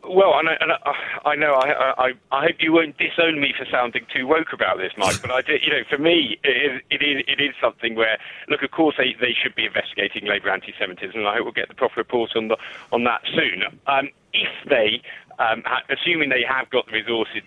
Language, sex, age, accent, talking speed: English, male, 40-59, British, 235 wpm